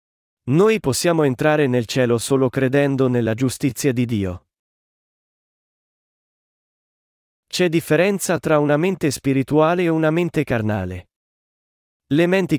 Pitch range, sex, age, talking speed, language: 120-155 Hz, male, 40-59, 110 wpm, Italian